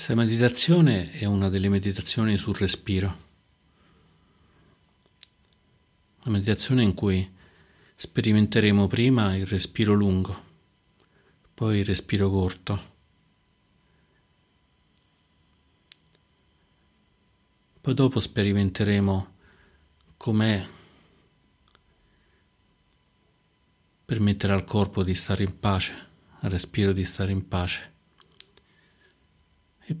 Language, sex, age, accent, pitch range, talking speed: Italian, male, 50-69, native, 90-105 Hz, 80 wpm